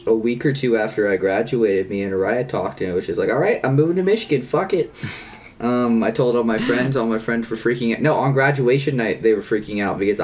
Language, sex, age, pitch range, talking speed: English, male, 20-39, 105-120 Hz, 265 wpm